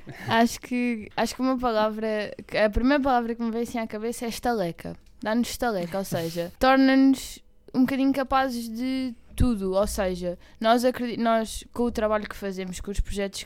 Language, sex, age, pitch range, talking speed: Portuguese, female, 10-29, 195-235 Hz, 170 wpm